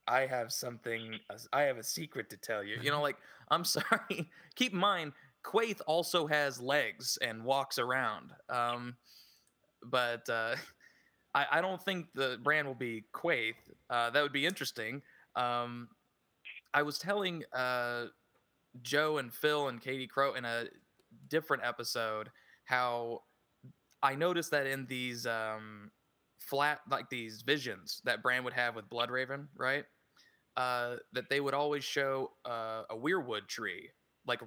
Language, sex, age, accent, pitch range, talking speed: English, male, 20-39, American, 120-145 Hz, 150 wpm